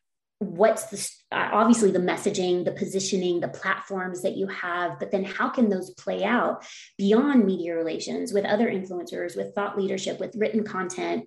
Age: 30-49